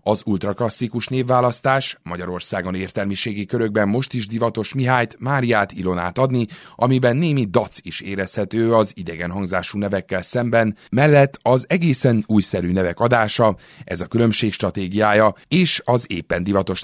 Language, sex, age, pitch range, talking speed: Hungarian, male, 30-49, 95-125 Hz, 130 wpm